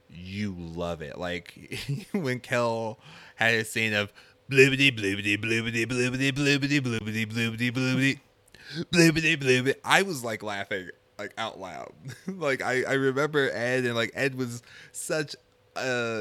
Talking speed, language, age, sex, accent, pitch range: 145 wpm, English, 20-39, male, American, 100-135 Hz